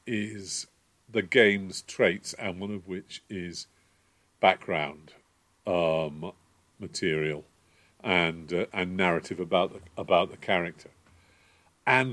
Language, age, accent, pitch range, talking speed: English, 50-69, British, 90-125 Hz, 110 wpm